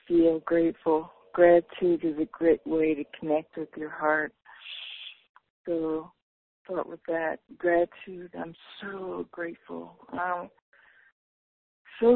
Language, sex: English, female